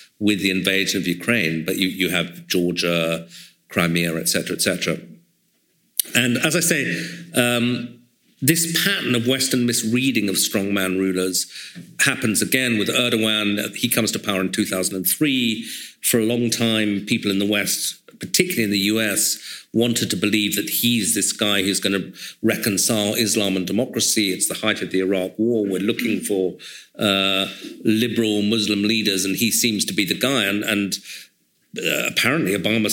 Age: 50-69